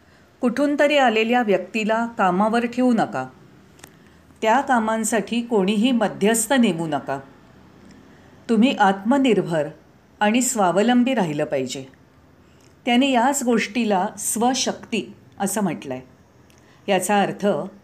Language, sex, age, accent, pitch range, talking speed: Marathi, female, 40-59, native, 185-245 Hz, 90 wpm